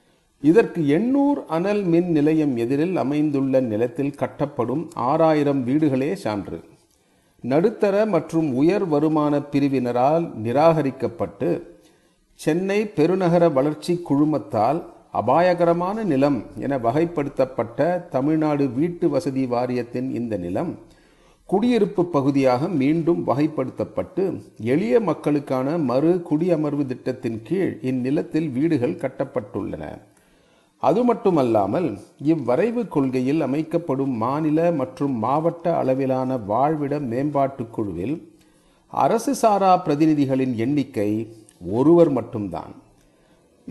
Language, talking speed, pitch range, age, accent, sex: Tamil, 85 wpm, 130-170 Hz, 40-59, native, male